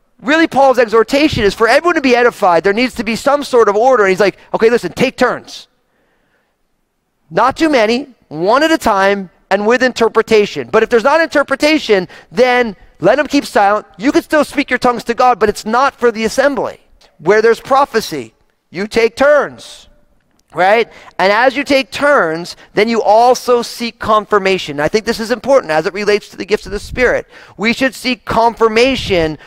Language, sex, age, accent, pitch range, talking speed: English, male, 40-59, American, 185-250 Hz, 190 wpm